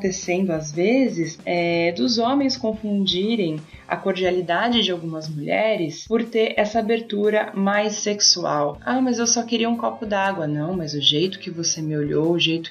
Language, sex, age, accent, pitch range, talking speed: Portuguese, female, 20-39, Brazilian, 165-225 Hz, 170 wpm